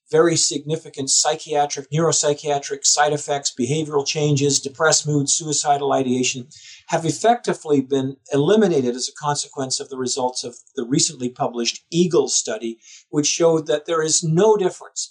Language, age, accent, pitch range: English, 50-69, American, 135-160 Hz